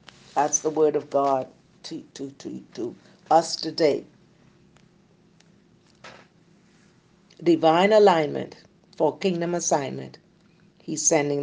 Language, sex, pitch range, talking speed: English, female, 175-225 Hz, 95 wpm